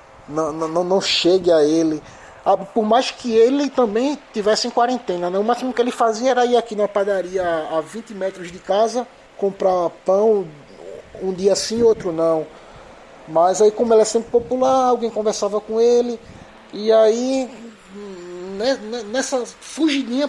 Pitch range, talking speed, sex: 165-215 Hz, 155 wpm, male